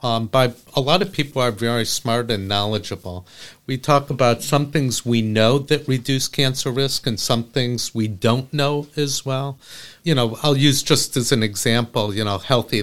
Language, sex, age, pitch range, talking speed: English, male, 50-69, 100-125 Hz, 190 wpm